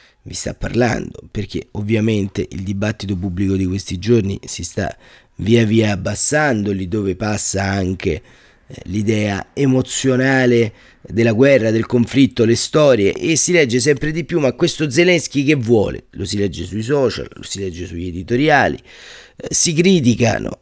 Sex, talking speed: male, 150 wpm